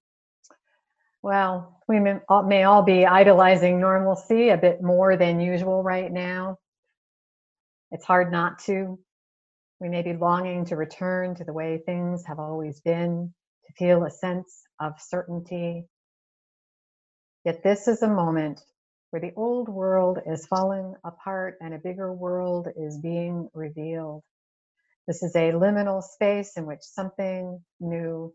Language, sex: English, female